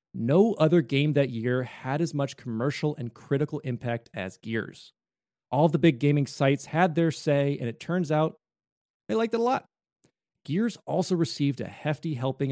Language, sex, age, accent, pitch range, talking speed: English, male, 30-49, American, 125-160 Hz, 175 wpm